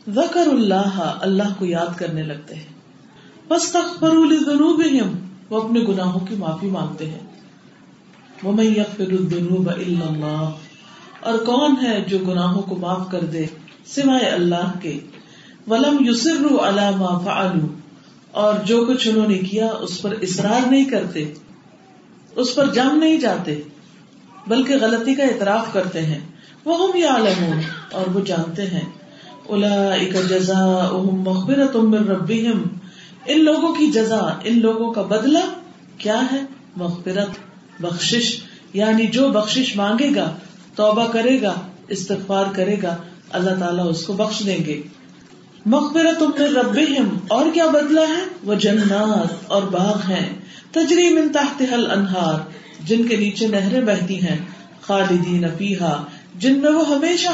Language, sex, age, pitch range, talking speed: Urdu, female, 40-59, 180-245 Hz, 125 wpm